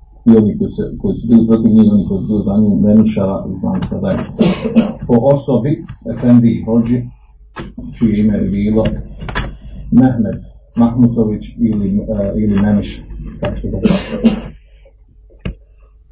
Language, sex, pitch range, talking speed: Croatian, male, 110-125 Hz, 135 wpm